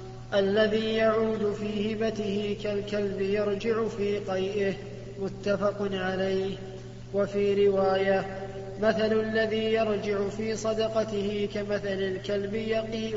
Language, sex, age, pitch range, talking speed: Arabic, male, 20-39, 195-220 Hz, 90 wpm